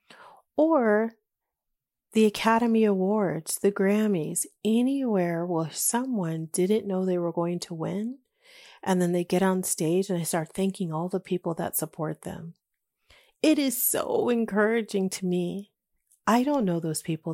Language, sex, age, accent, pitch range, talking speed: English, female, 40-59, American, 165-205 Hz, 150 wpm